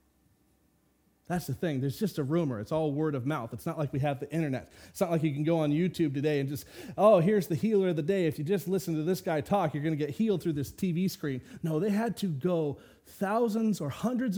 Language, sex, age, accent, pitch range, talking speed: English, male, 30-49, American, 120-165 Hz, 260 wpm